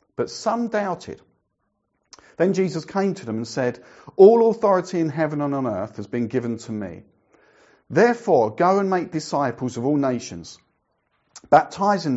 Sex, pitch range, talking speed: male, 105-150 Hz, 155 wpm